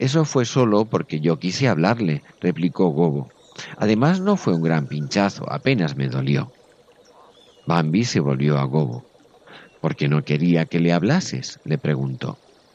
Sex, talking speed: male, 150 wpm